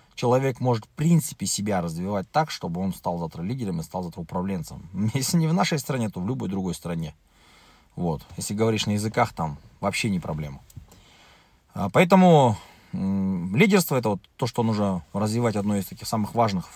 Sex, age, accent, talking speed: male, 30-49, native, 165 wpm